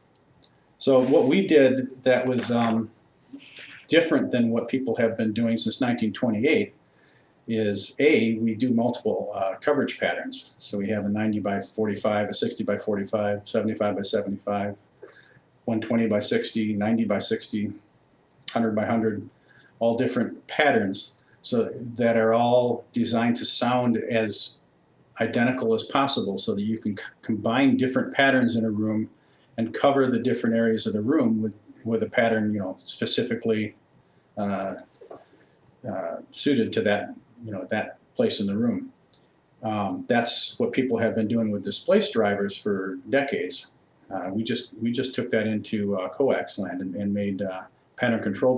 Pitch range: 105-120 Hz